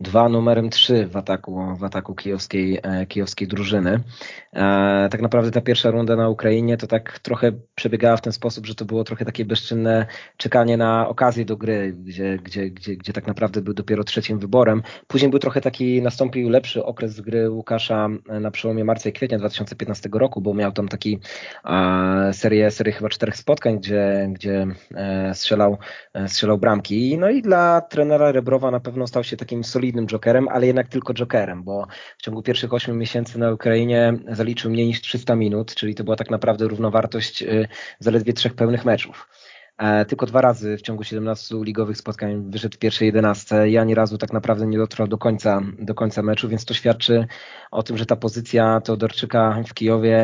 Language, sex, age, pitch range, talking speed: Polish, male, 20-39, 105-115 Hz, 185 wpm